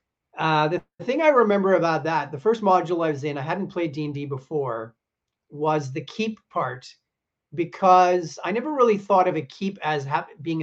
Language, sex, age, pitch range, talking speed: English, male, 40-59, 145-175 Hz, 190 wpm